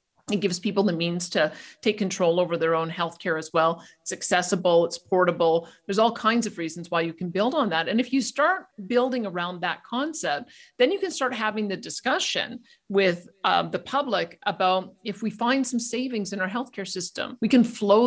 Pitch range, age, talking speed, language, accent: 185-235 Hz, 50-69, 205 wpm, English, American